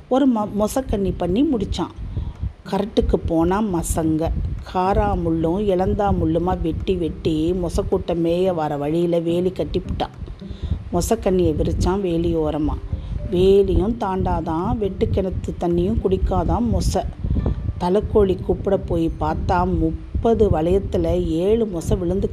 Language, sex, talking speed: Tamil, female, 100 wpm